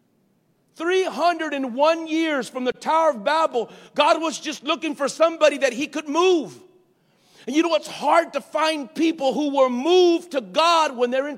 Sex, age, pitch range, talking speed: male, 50-69, 255-320 Hz, 190 wpm